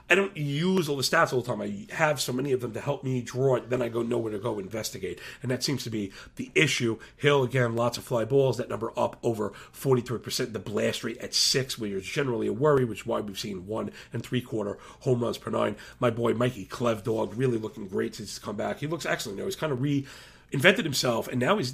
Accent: American